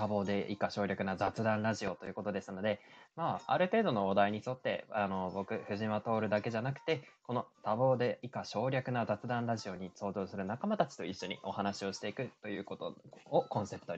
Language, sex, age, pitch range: Japanese, male, 20-39, 100-130 Hz